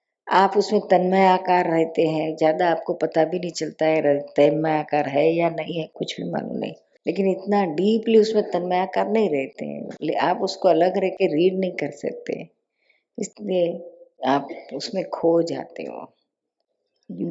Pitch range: 160-190 Hz